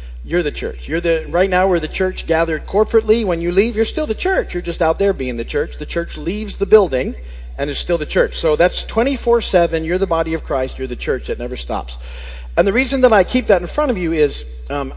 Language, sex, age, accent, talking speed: English, male, 40-59, American, 255 wpm